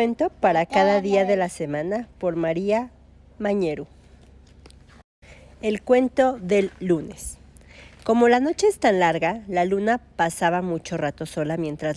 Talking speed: 135 wpm